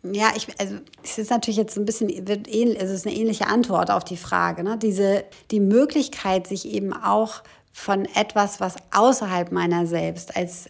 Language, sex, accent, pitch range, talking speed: German, female, German, 175-210 Hz, 175 wpm